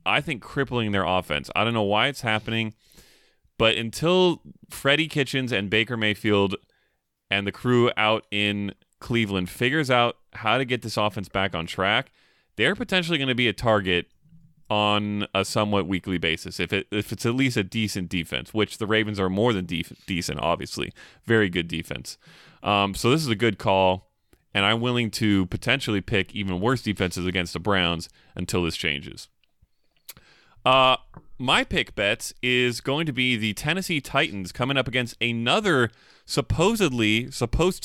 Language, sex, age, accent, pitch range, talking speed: English, male, 30-49, American, 95-125 Hz, 170 wpm